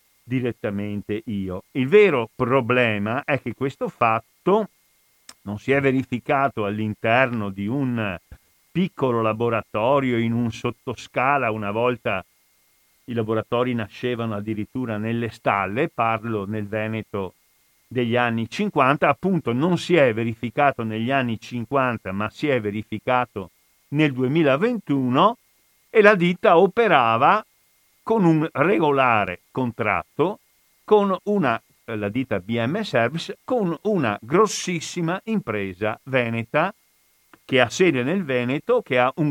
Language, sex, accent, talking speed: Italian, male, native, 115 wpm